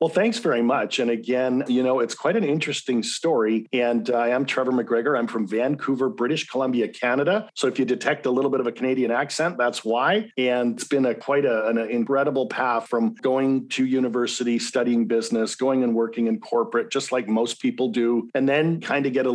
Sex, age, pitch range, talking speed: male, 40-59, 115-130 Hz, 210 wpm